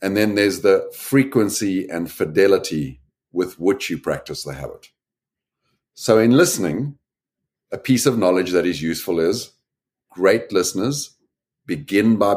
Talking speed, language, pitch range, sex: 135 wpm, English, 90-130 Hz, male